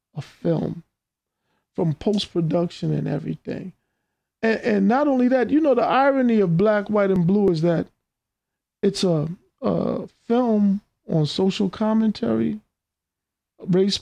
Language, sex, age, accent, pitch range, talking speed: English, male, 50-69, American, 170-235 Hz, 130 wpm